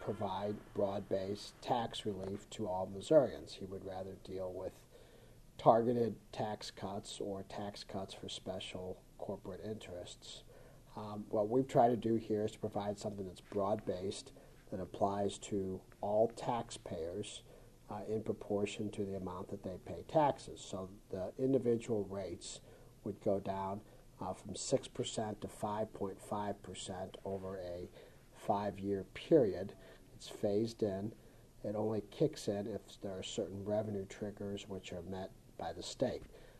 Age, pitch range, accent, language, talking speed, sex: 50-69, 95-115 Hz, American, English, 140 wpm, male